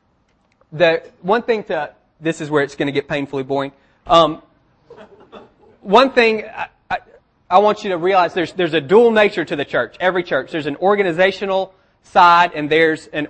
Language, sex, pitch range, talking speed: English, male, 145-175 Hz, 180 wpm